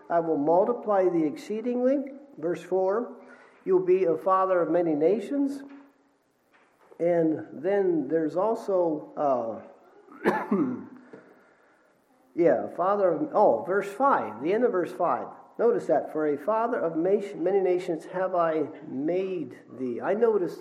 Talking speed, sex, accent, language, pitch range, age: 130 wpm, male, American, English, 160-240 Hz, 50-69